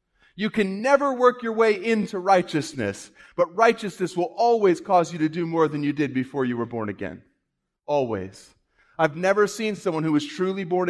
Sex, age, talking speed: male, 30-49, 185 wpm